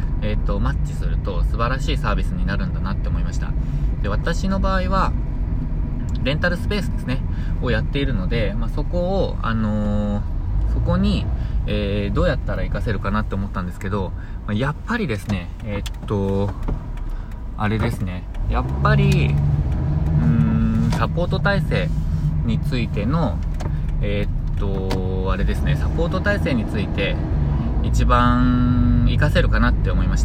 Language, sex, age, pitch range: Japanese, male, 20-39, 80-105 Hz